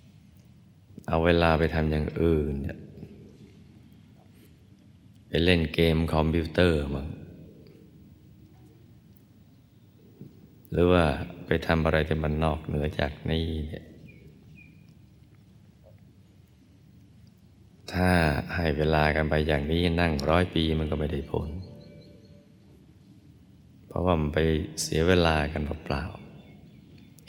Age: 20-39